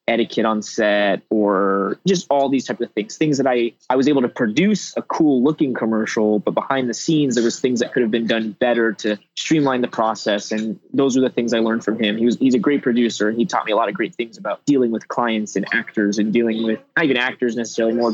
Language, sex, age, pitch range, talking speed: English, male, 20-39, 115-135 Hz, 255 wpm